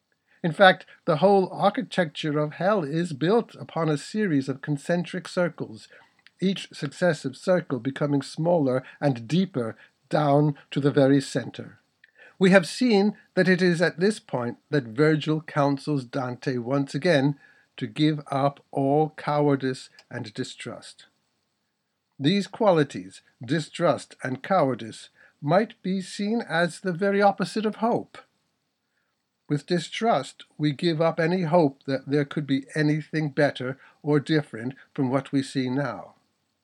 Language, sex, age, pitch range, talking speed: English, male, 60-79, 135-175 Hz, 135 wpm